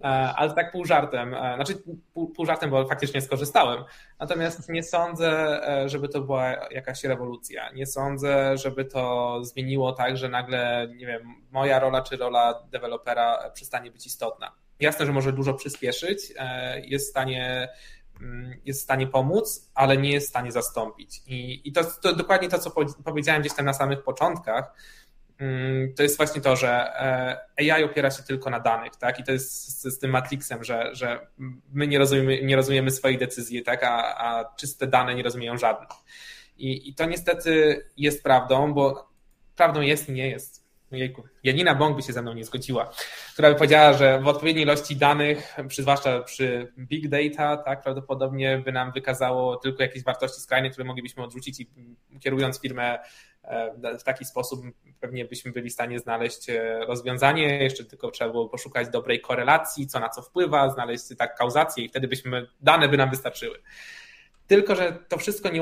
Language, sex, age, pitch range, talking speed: Polish, male, 20-39, 125-145 Hz, 170 wpm